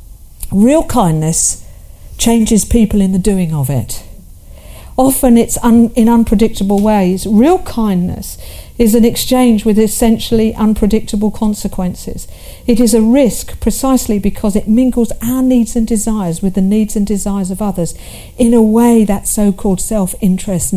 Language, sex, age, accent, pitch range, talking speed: English, female, 50-69, British, 185-235 Hz, 140 wpm